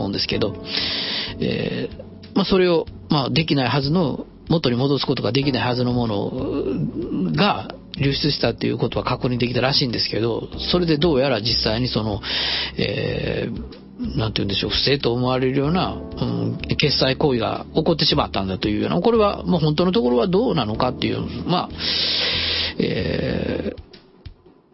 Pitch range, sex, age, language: 120-165 Hz, male, 40-59, Japanese